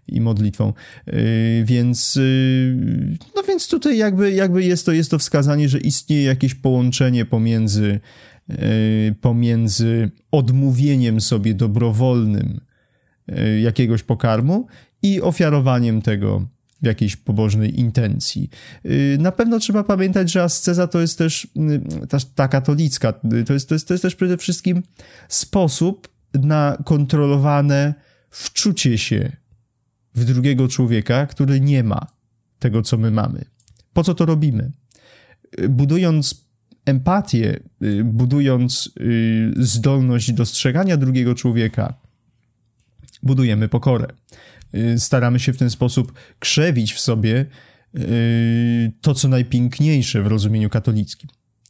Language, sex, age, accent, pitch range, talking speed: Polish, male, 30-49, native, 115-150 Hz, 105 wpm